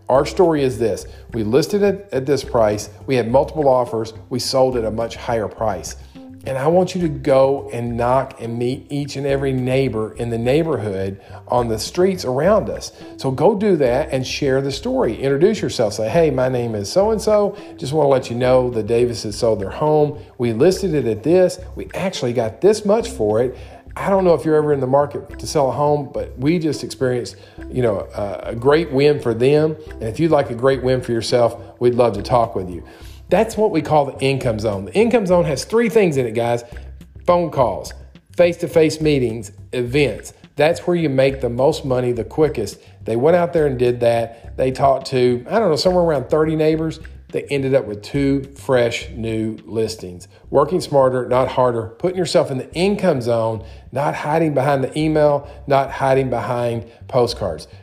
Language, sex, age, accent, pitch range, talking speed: English, male, 40-59, American, 115-150 Hz, 205 wpm